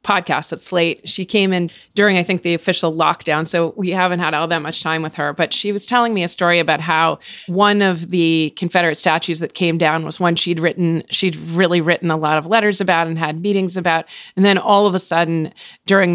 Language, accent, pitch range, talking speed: English, American, 165-195 Hz, 230 wpm